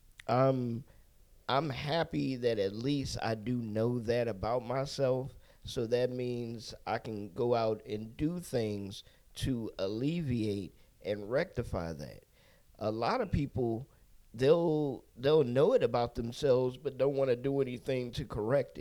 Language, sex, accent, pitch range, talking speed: English, male, American, 110-140 Hz, 145 wpm